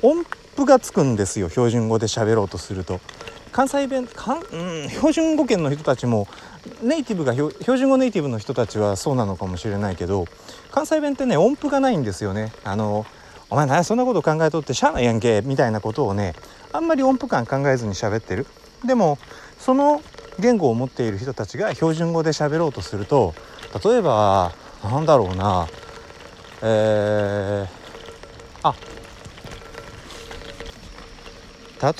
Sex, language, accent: male, Japanese, native